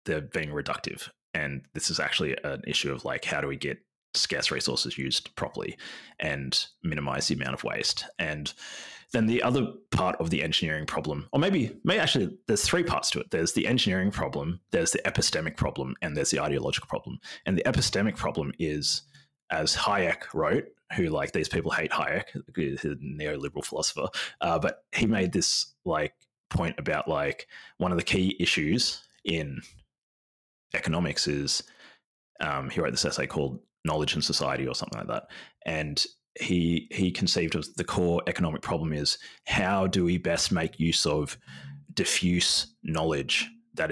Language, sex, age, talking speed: English, male, 30-49, 170 wpm